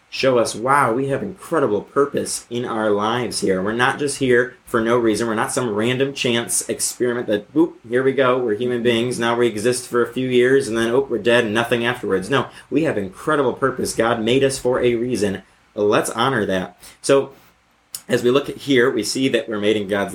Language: English